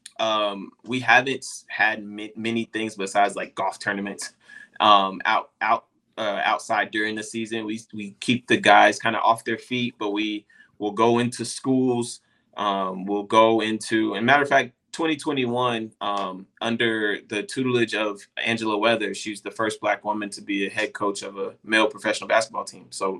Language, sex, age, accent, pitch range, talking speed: English, male, 20-39, American, 105-115 Hz, 175 wpm